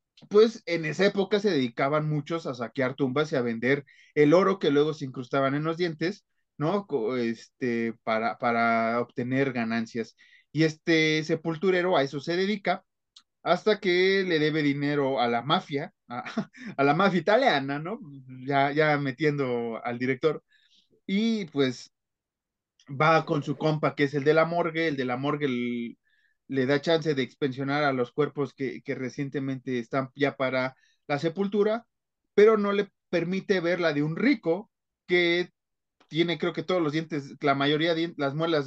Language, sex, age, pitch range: Spanish, male, 30-49, 130-180 Hz